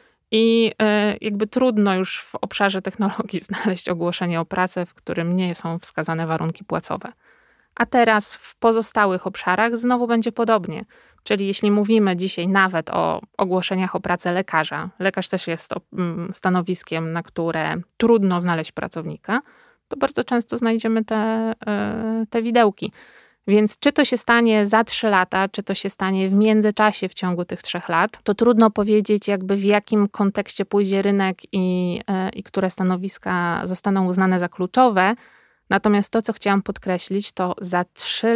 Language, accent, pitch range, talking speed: Polish, native, 180-215 Hz, 150 wpm